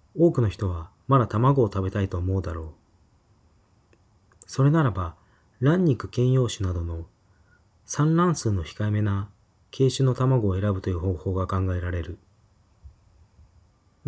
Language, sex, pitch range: Japanese, male, 90-130 Hz